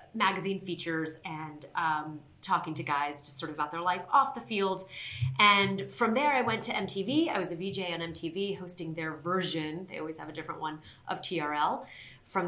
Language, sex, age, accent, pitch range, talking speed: English, female, 30-49, American, 155-180 Hz, 195 wpm